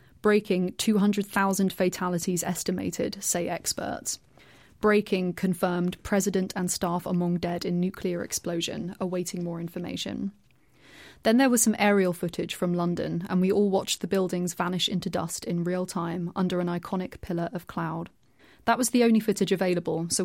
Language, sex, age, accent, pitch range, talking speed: English, female, 30-49, British, 175-195 Hz, 155 wpm